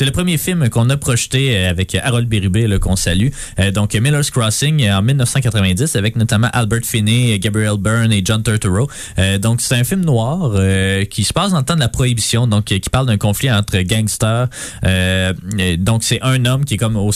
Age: 20-39